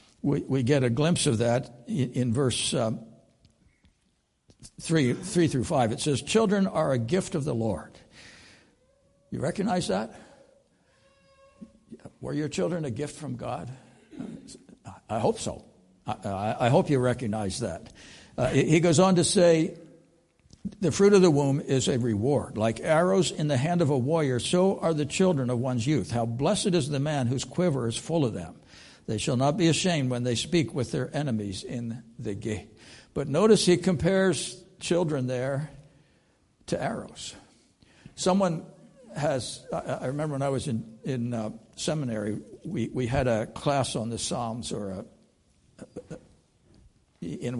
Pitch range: 120-165 Hz